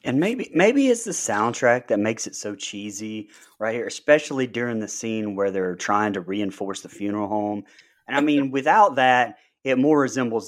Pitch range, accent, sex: 105-150 Hz, American, male